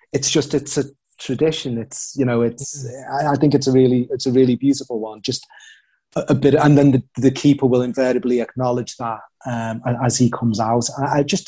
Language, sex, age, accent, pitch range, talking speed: English, male, 30-49, British, 120-140 Hz, 210 wpm